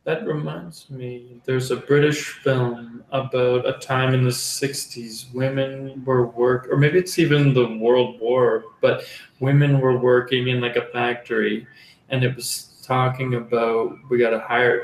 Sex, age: male, 20-39